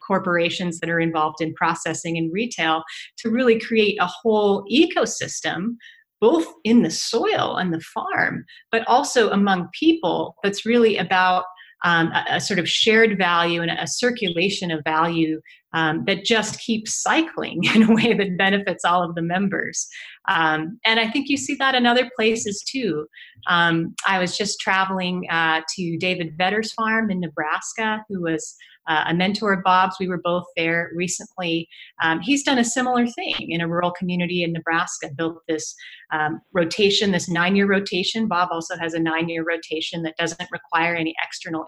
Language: English